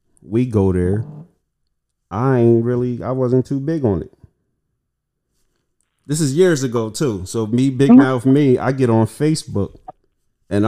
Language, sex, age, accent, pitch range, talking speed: English, male, 30-49, American, 100-125 Hz, 150 wpm